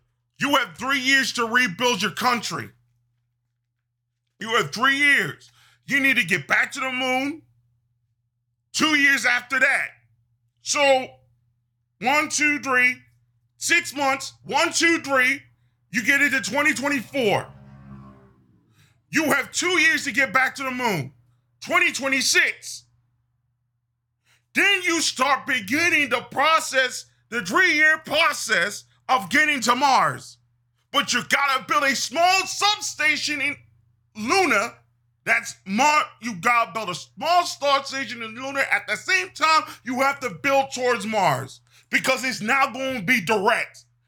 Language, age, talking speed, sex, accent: English, 30-49, 135 wpm, male, American